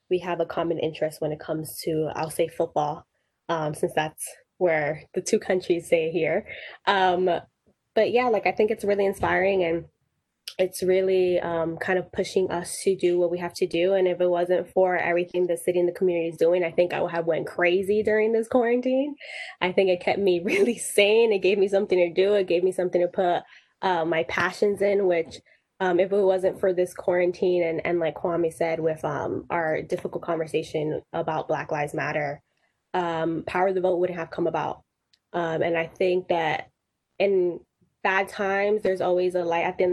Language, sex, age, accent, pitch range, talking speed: English, female, 10-29, American, 165-190 Hz, 205 wpm